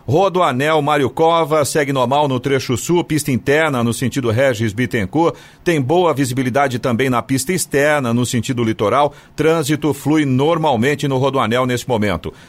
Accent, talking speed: Brazilian, 150 wpm